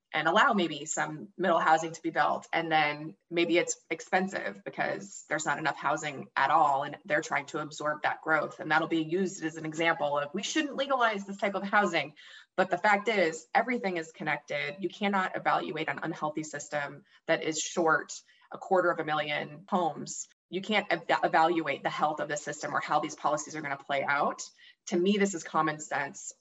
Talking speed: 200 wpm